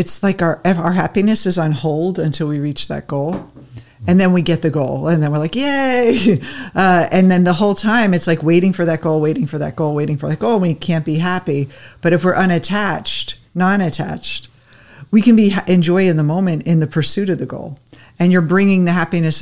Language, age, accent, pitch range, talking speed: English, 50-69, American, 150-185 Hz, 220 wpm